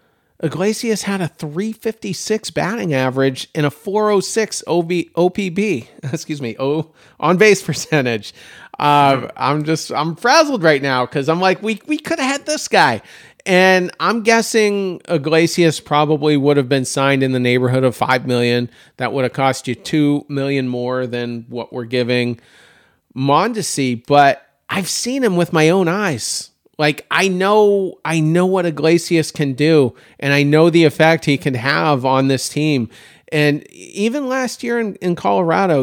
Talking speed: 160 wpm